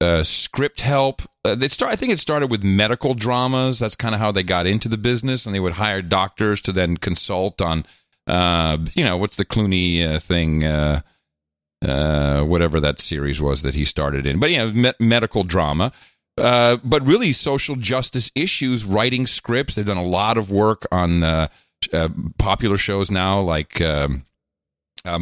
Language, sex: English, male